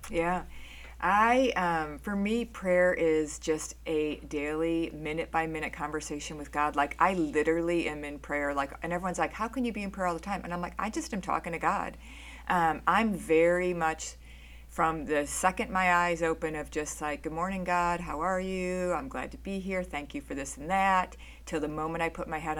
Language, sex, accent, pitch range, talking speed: English, female, American, 150-185 Hz, 210 wpm